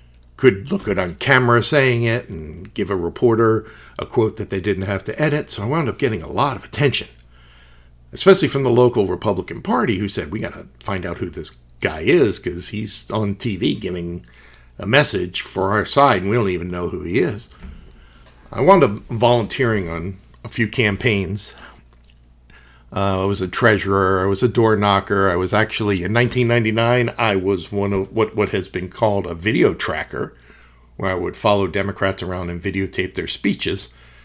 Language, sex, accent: English, male, American